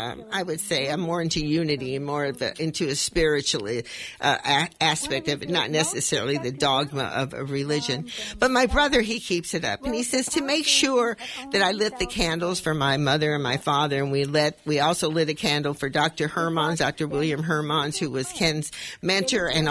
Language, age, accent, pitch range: English, 50-69, American, 150-240 Hz